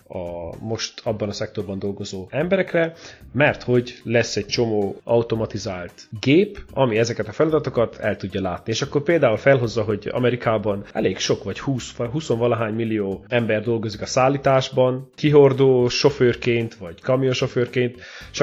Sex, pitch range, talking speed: male, 105-135 Hz, 135 wpm